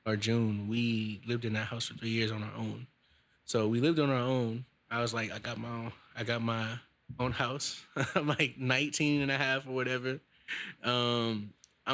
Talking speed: 200 wpm